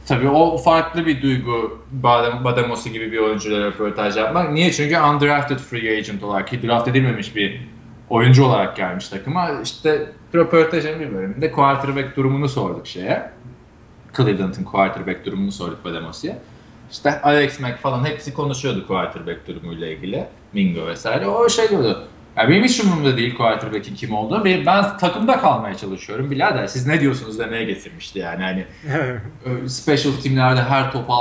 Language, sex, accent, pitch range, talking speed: Turkish, male, native, 105-145 Hz, 145 wpm